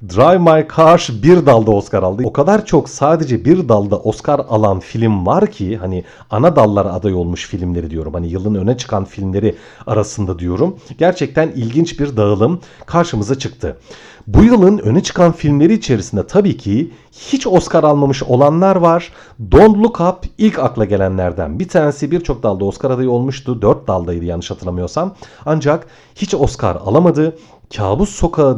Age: 40-59